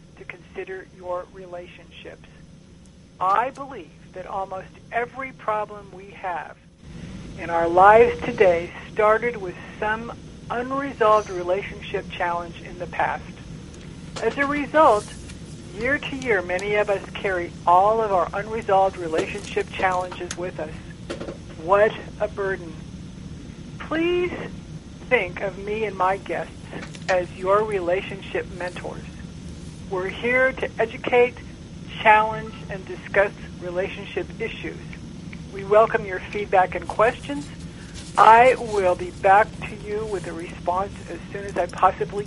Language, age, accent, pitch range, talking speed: English, 60-79, American, 175-215 Hz, 120 wpm